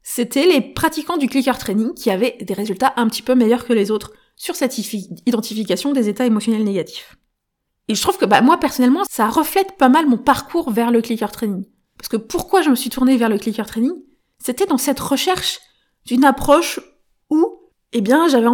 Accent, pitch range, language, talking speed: French, 225-280 Hz, French, 200 wpm